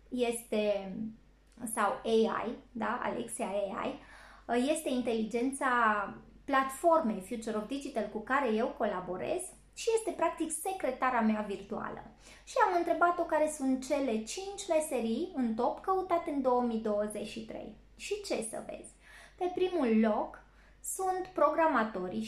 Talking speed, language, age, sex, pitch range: 120 wpm, Romanian, 20-39, female, 220-330 Hz